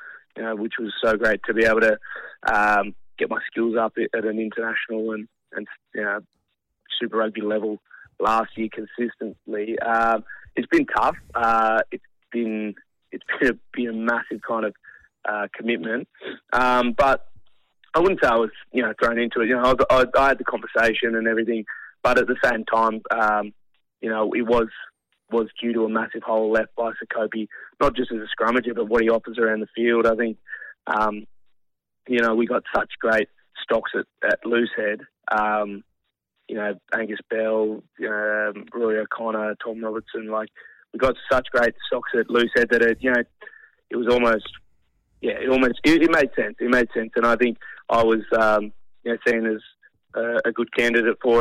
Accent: Australian